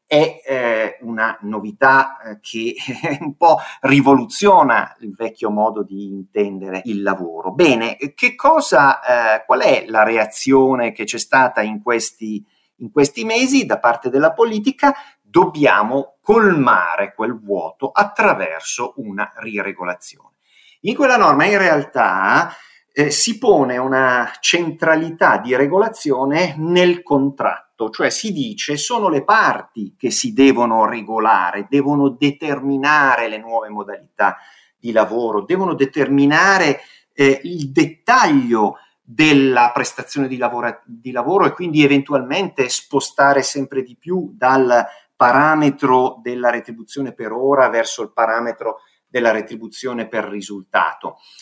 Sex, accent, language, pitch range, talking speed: male, native, Italian, 115-150 Hz, 120 wpm